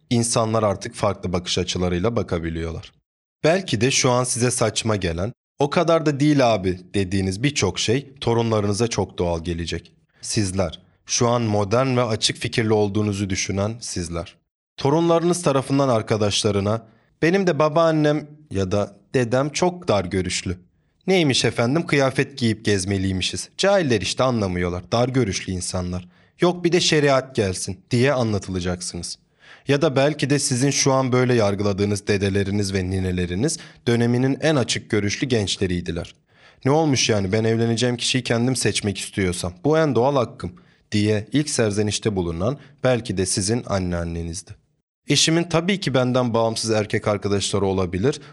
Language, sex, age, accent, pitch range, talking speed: Turkish, male, 30-49, native, 95-135 Hz, 140 wpm